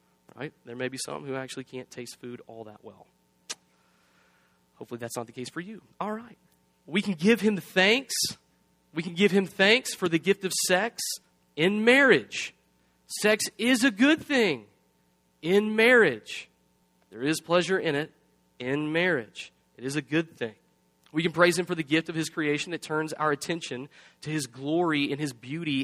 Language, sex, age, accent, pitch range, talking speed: English, male, 30-49, American, 105-170 Hz, 180 wpm